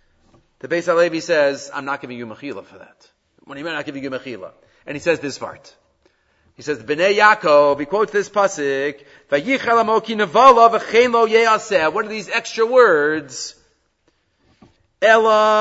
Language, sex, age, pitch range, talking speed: English, male, 40-59, 185-255 Hz, 145 wpm